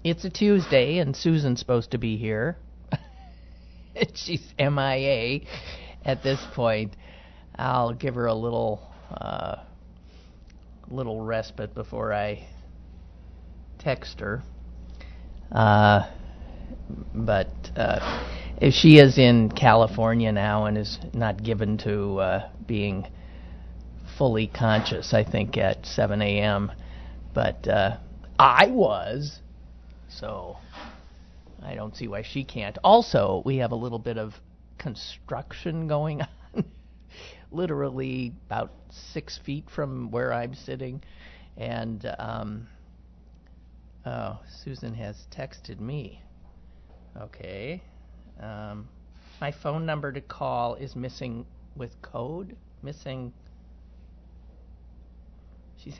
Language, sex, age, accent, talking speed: English, male, 50-69, American, 110 wpm